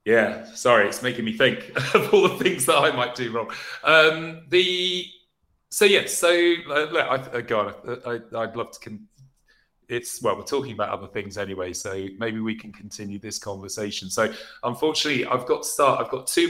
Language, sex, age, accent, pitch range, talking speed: English, male, 30-49, British, 115-155 Hz, 195 wpm